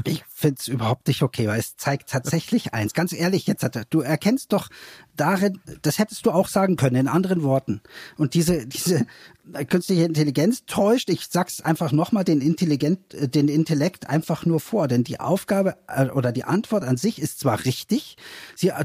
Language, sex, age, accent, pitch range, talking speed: German, male, 40-59, German, 135-185 Hz, 185 wpm